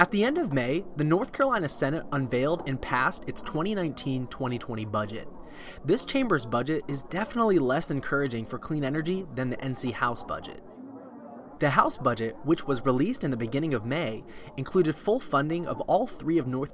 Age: 20-39